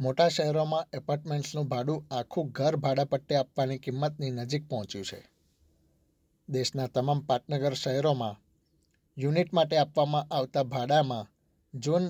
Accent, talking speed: native, 115 wpm